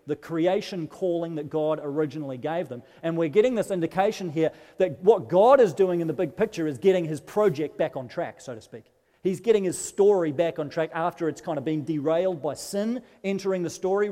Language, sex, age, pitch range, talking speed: English, male, 40-59, 135-185 Hz, 215 wpm